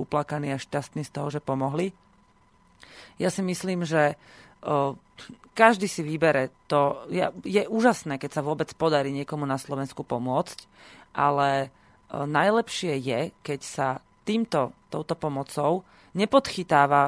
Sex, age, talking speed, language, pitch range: female, 30-49, 120 wpm, Slovak, 140-165 Hz